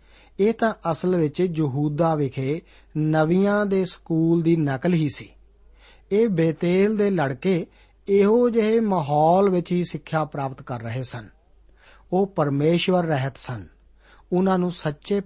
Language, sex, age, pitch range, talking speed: Punjabi, male, 50-69, 145-185 Hz, 135 wpm